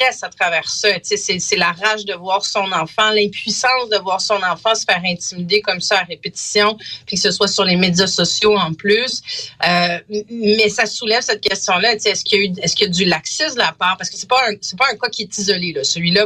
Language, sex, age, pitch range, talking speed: French, female, 40-59, 175-215 Hz, 235 wpm